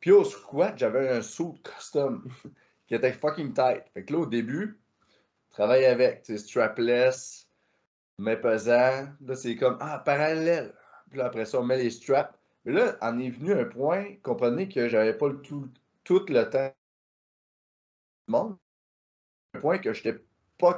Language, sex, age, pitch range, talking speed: French, male, 30-49, 105-145 Hz, 175 wpm